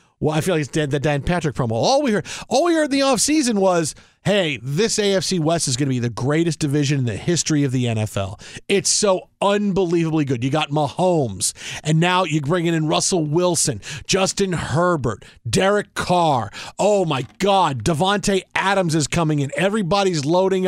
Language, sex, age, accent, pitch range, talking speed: English, male, 50-69, American, 145-195 Hz, 180 wpm